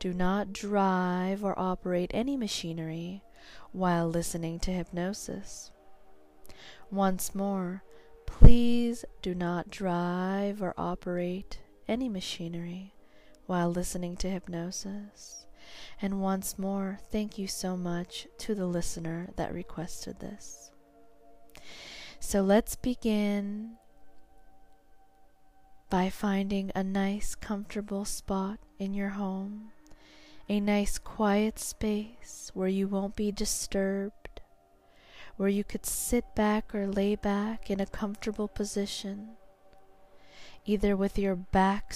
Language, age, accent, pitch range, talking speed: English, 20-39, American, 180-210 Hz, 105 wpm